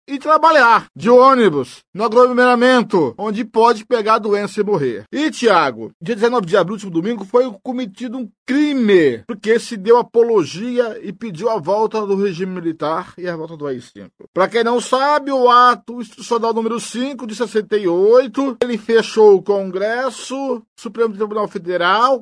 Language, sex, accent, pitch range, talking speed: Portuguese, male, Brazilian, 215-290 Hz, 160 wpm